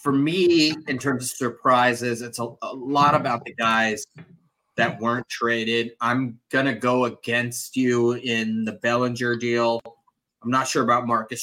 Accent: American